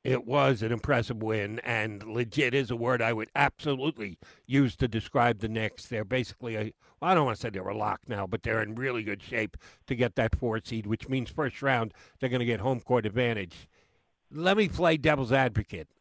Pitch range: 120-165 Hz